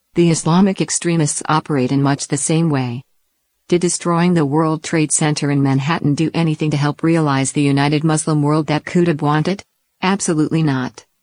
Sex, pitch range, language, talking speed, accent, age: female, 145-165 Hz, English, 165 wpm, American, 50-69